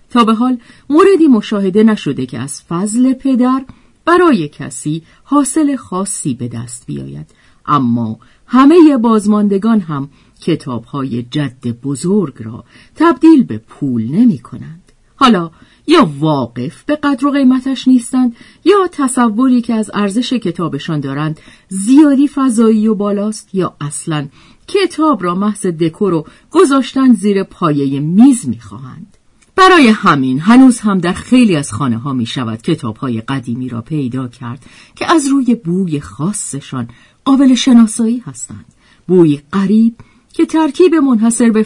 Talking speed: 130 wpm